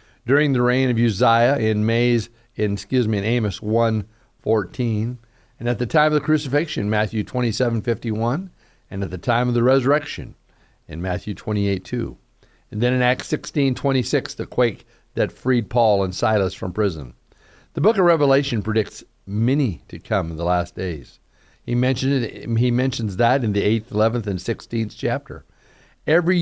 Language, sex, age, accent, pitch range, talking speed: English, male, 50-69, American, 105-130 Hz, 160 wpm